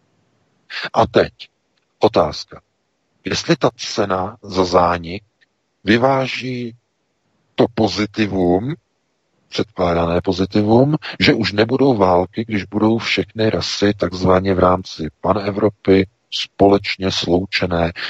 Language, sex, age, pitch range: Czech, male, 50-69, 90-115 Hz